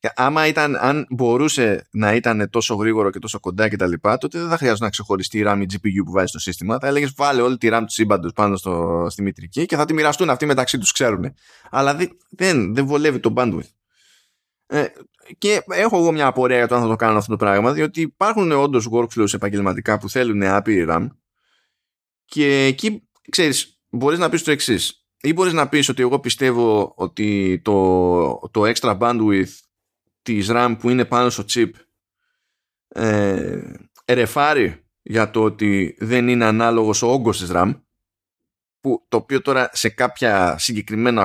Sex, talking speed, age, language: male, 170 wpm, 20-39, Greek